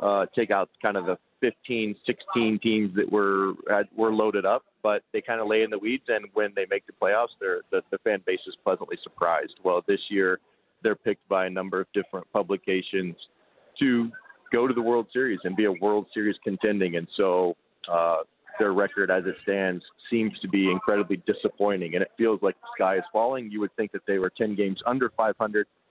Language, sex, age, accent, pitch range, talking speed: English, male, 40-59, American, 95-120 Hz, 215 wpm